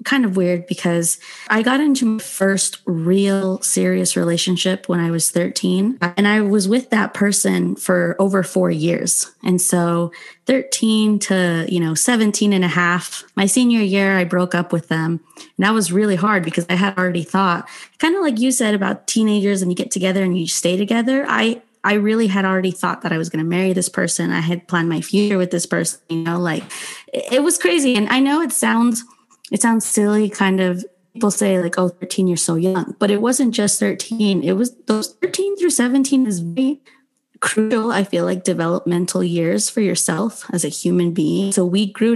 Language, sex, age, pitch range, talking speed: English, female, 20-39, 175-220 Hz, 205 wpm